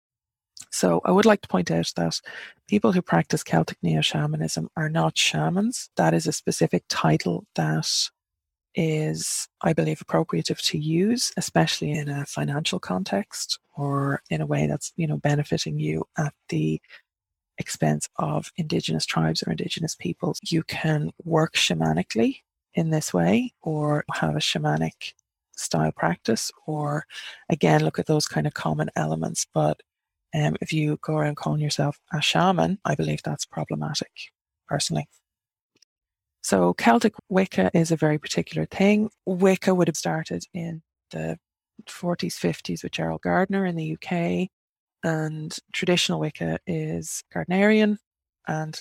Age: 30-49